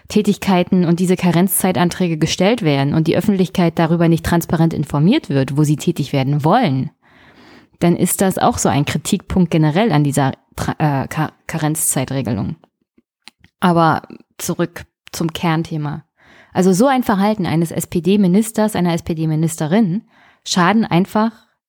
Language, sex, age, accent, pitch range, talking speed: German, female, 20-39, German, 165-205 Hz, 125 wpm